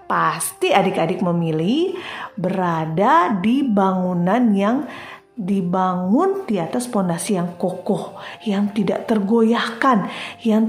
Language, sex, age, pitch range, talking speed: Indonesian, female, 30-49, 190-280 Hz, 95 wpm